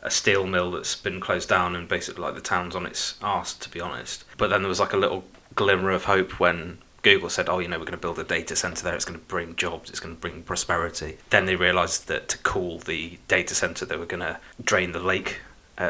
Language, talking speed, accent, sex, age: English, 260 wpm, British, male, 20-39